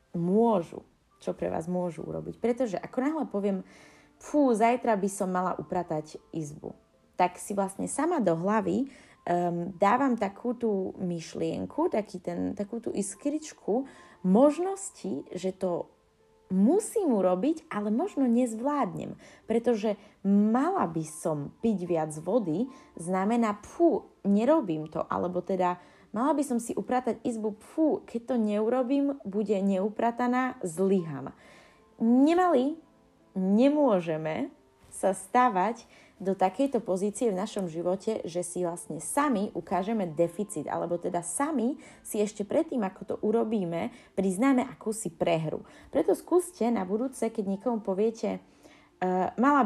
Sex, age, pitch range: female, 20-39, 180-250 Hz